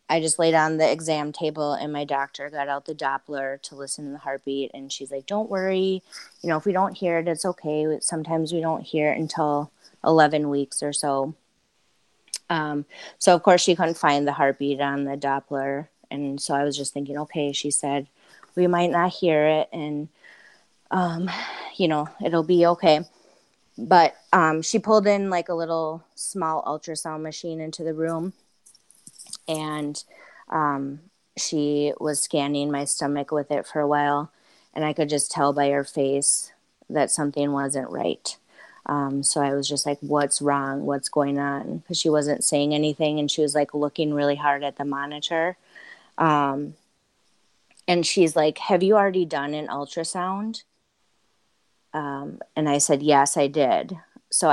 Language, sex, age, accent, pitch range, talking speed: English, female, 20-39, American, 140-165 Hz, 175 wpm